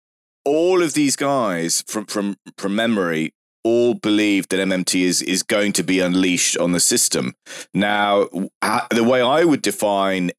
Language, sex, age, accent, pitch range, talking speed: English, male, 30-49, British, 90-110 Hz, 160 wpm